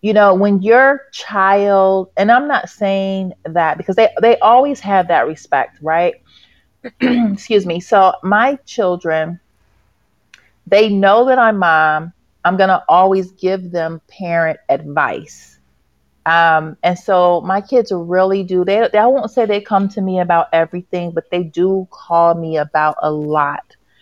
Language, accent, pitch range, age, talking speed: English, American, 160-200 Hz, 30-49, 155 wpm